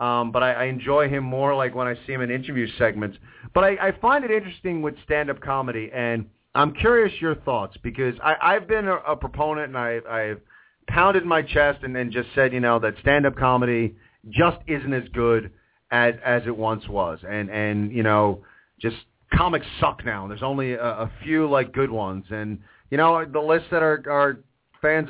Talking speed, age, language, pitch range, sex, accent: 195 wpm, 40-59, English, 115-150 Hz, male, American